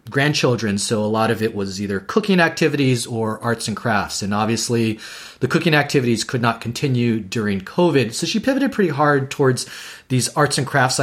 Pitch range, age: 115-150 Hz, 30-49